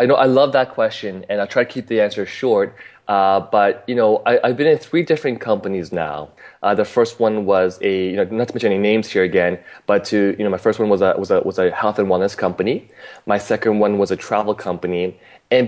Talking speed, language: 255 wpm, English